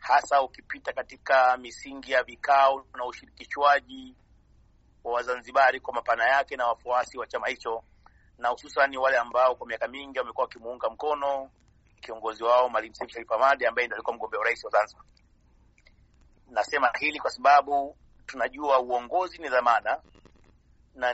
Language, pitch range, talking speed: Swahili, 135-190 Hz, 135 wpm